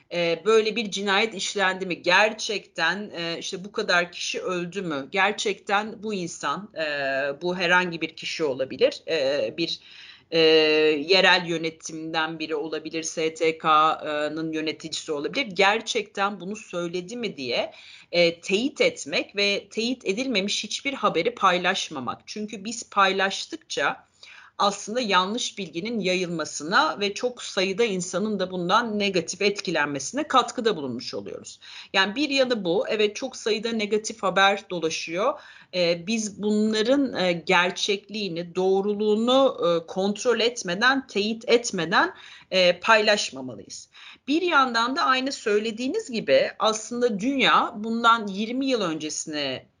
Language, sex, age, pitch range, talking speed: Turkish, female, 40-59, 170-225 Hz, 110 wpm